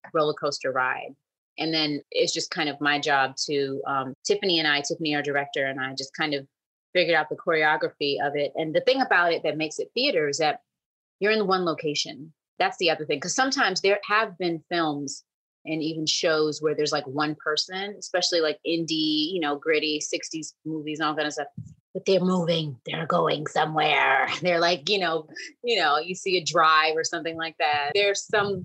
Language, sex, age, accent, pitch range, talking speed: English, female, 30-49, American, 145-180 Hz, 200 wpm